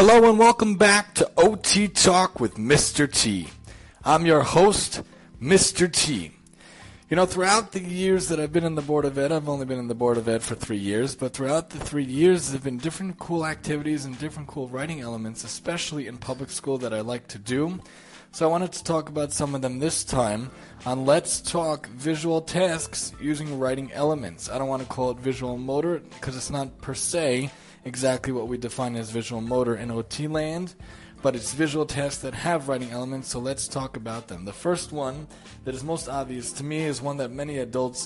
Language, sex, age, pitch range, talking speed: English, male, 20-39, 120-150 Hz, 210 wpm